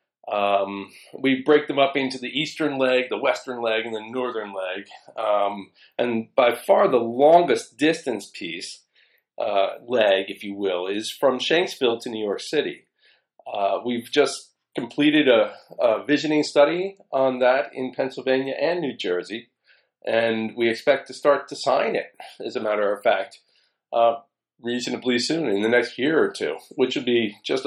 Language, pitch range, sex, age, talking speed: English, 110-145 Hz, male, 40-59, 165 wpm